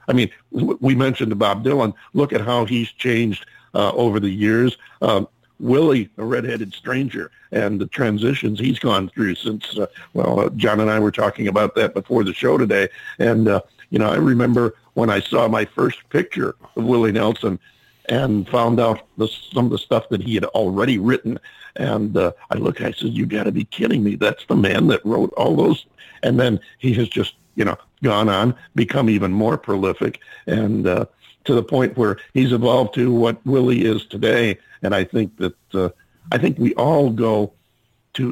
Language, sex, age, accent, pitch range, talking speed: English, male, 50-69, American, 105-120 Hz, 195 wpm